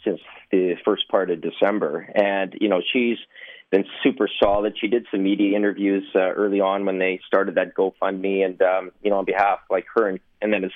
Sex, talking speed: male, 220 wpm